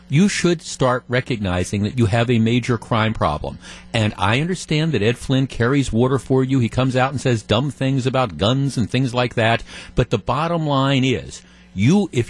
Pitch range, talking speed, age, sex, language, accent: 110-135 Hz, 200 wpm, 50-69, male, English, American